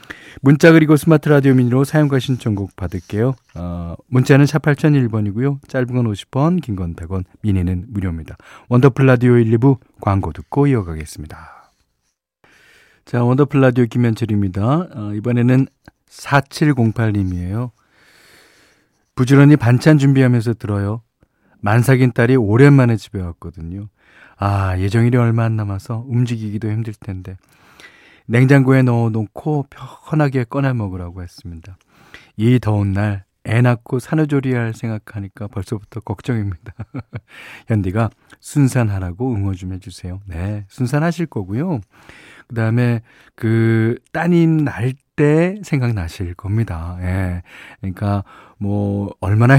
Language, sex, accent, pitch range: Korean, male, native, 100-130 Hz